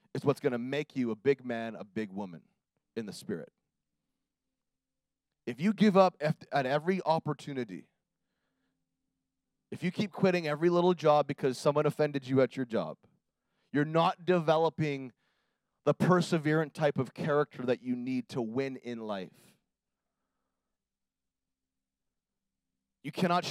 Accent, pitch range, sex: American, 130-175 Hz, male